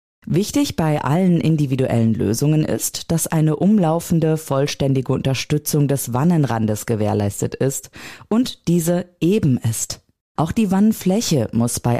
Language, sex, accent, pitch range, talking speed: German, female, German, 120-170 Hz, 120 wpm